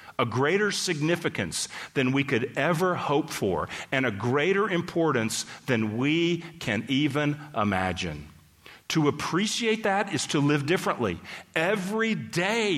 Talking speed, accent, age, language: 125 wpm, American, 40-59, English